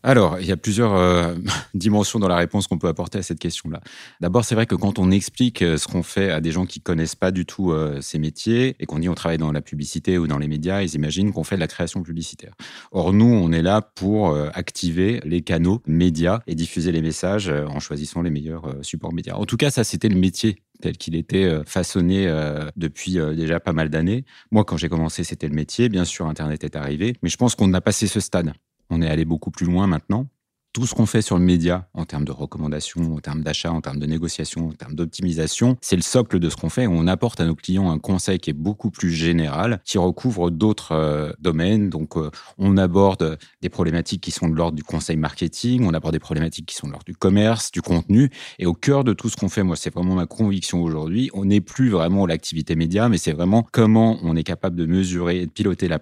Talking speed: 245 wpm